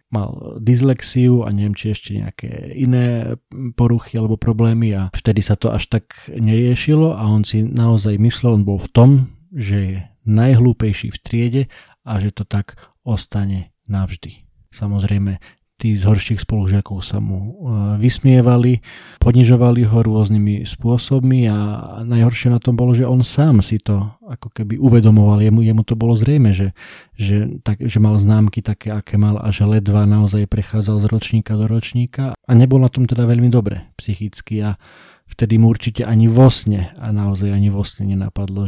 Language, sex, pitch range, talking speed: Slovak, male, 105-120 Hz, 165 wpm